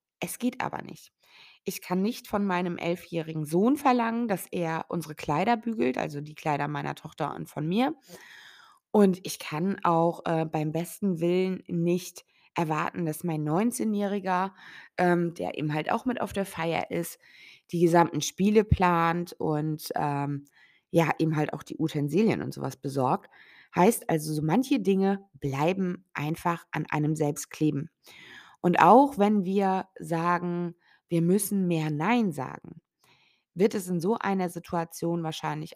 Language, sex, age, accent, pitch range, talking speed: German, female, 20-39, German, 155-195 Hz, 150 wpm